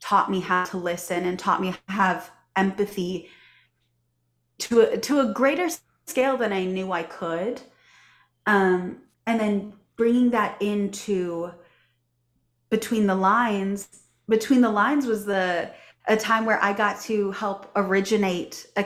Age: 20-39